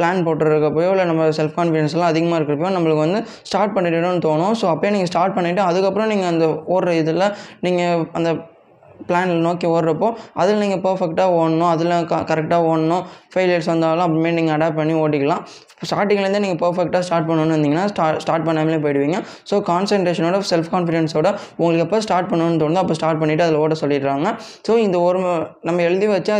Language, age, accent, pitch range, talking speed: Tamil, 20-39, native, 160-190 Hz, 165 wpm